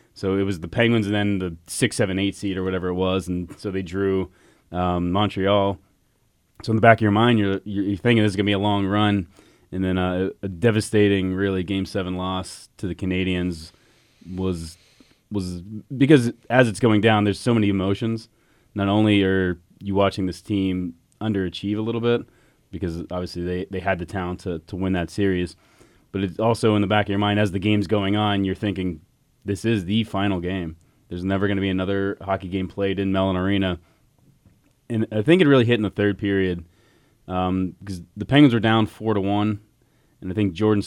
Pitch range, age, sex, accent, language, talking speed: 95-110 Hz, 20-39, male, American, English, 205 wpm